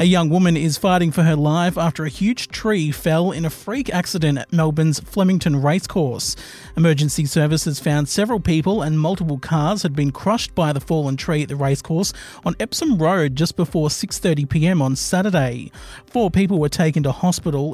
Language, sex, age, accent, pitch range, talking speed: English, male, 40-59, Australian, 145-180 Hz, 185 wpm